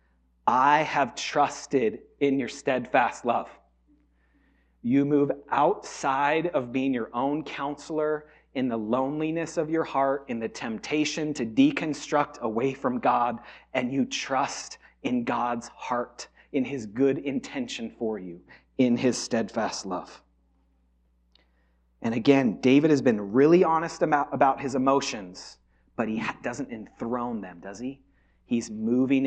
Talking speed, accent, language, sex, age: 135 wpm, American, English, male, 30-49